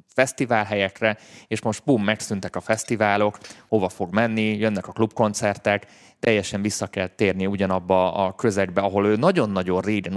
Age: 20-39